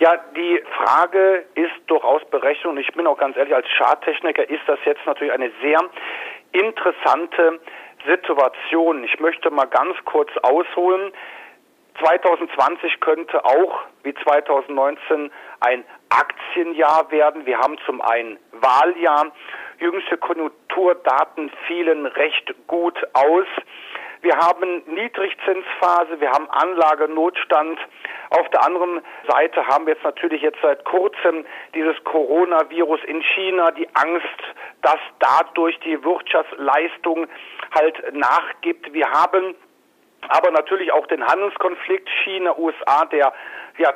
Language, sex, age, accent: German, male, 40-59, German